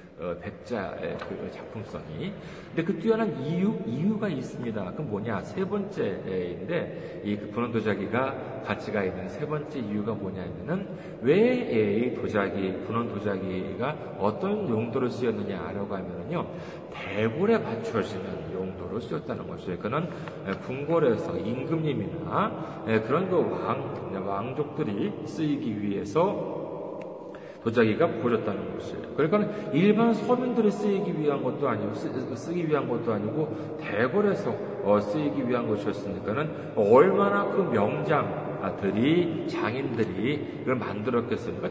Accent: native